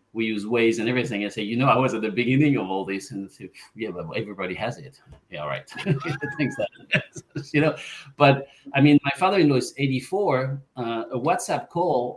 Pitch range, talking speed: 110-135 Hz, 210 wpm